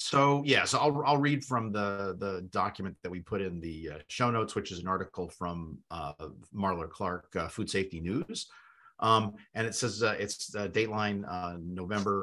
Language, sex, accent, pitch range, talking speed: English, male, American, 90-110 Hz, 195 wpm